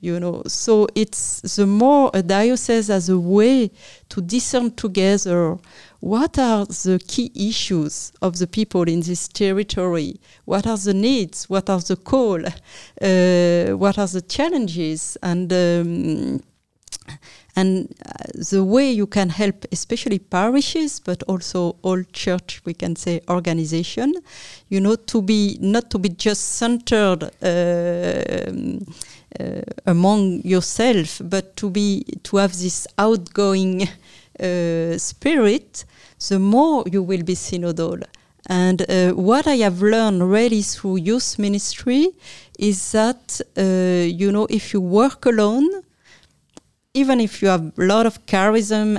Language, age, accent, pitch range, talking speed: English, 40-59, French, 180-225 Hz, 135 wpm